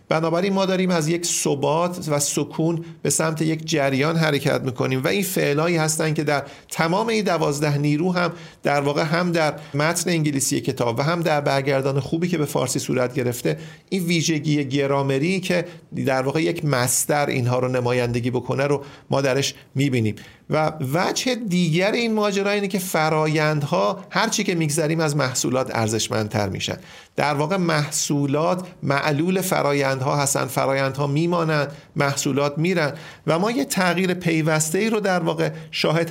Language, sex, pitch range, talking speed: Persian, male, 140-175 Hz, 160 wpm